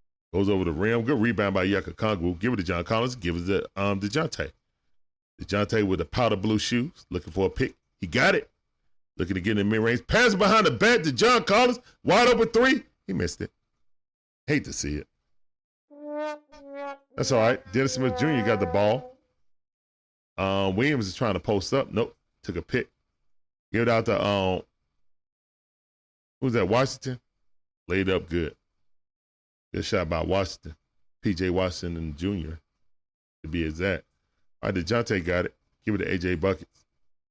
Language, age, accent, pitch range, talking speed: English, 10-29, American, 85-125 Hz, 170 wpm